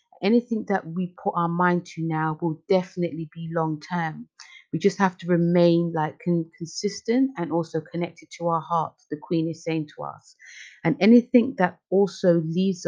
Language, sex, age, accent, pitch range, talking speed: English, female, 30-49, British, 170-190 Hz, 170 wpm